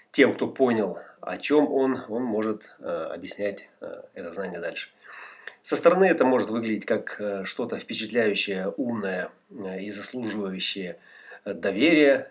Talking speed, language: 115 wpm, Russian